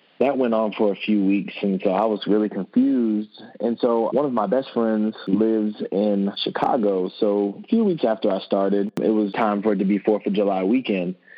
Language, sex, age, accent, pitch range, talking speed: English, male, 20-39, American, 95-110 Hz, 215 wpm